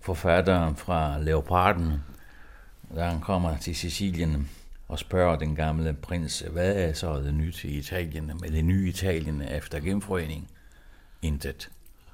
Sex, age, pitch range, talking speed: male, 60-79, 75-90 Hz, 135 wpm